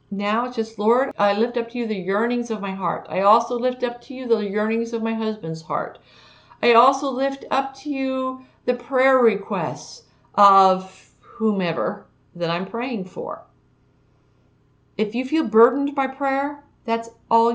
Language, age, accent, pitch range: English, 50-69, American, 160-235 Hz